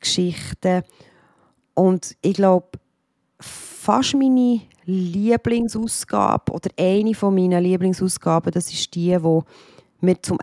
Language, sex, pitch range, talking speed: German, female, 165-200 Hz, 105 wpm